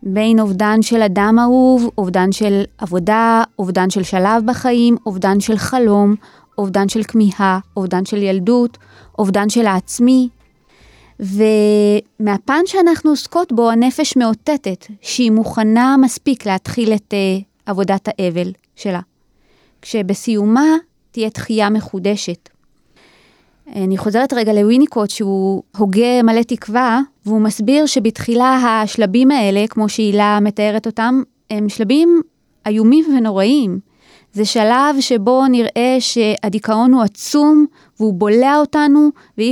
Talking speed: 110 wpm